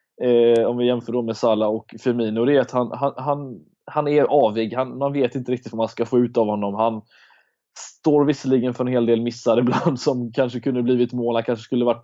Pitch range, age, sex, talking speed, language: 115-135 Hz, 20-39, male, 240 wpm, Swedish